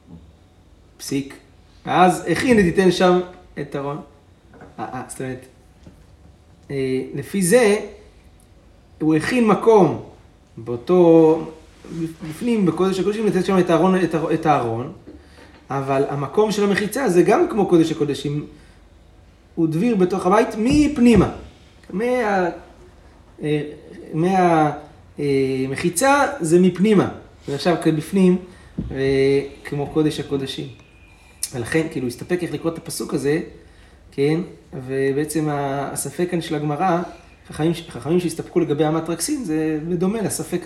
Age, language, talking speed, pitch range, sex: 30-49, Hebrew, 105 wpm, 130-180 Hz, male